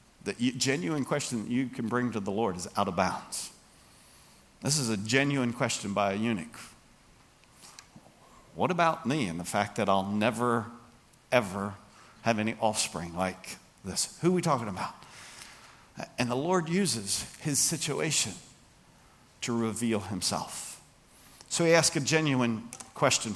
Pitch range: 115-165 Hz